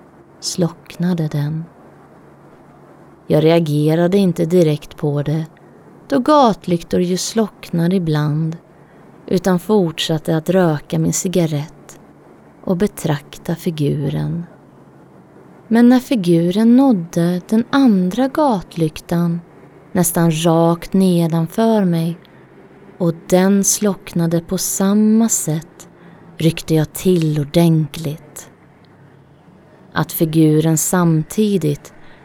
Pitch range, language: 155-185 Hz, Swedish